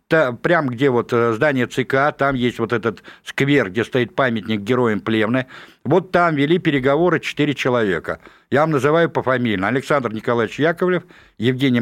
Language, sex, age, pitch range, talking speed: Russian, male, 60-79, 130-175 Hz, 145 wpm